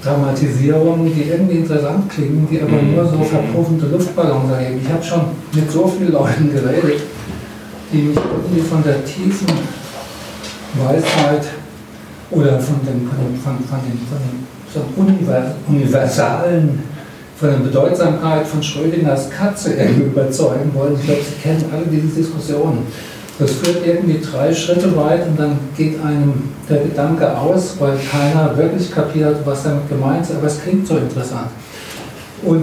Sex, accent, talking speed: male, German, 150 wpm